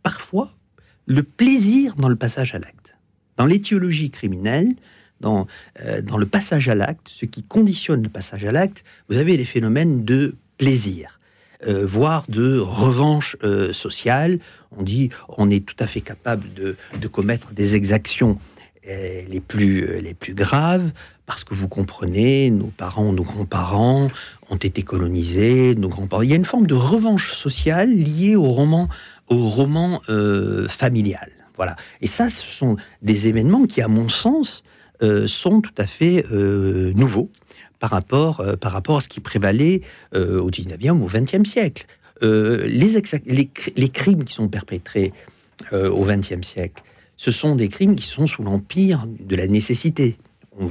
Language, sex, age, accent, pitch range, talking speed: French, male, 50-69, French, 100-145 Hz, 170 wpm